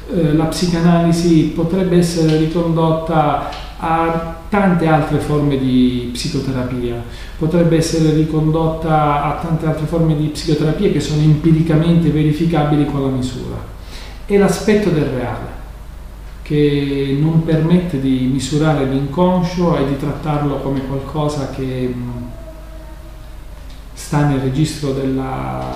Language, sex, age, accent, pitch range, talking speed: Italian, male, 40-59, native, 130-155 Hz, 110 wpm